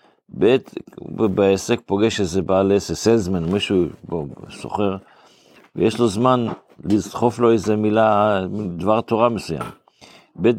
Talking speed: 135 wpm